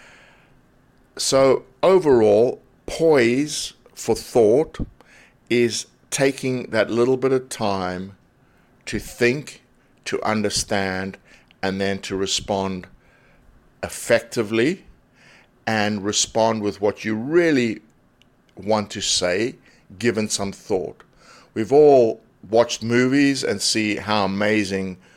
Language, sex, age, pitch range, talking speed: English, male, 60-79, 100-120 Hz, 100 wpm